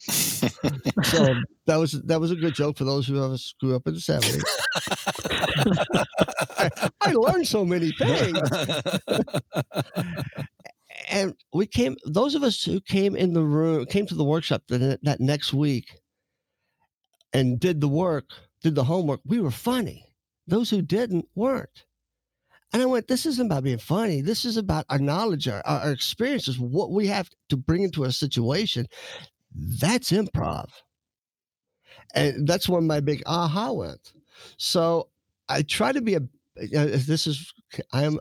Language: English